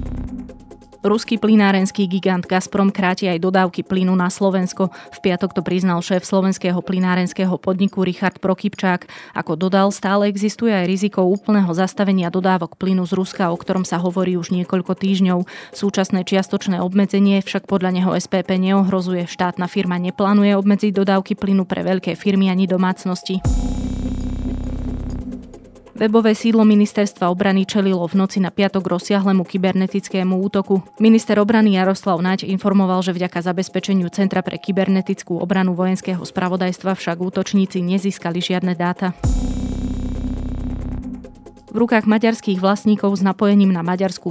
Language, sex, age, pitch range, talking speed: Slovak, female, 20-39, 180-195 Hz, 130 wpm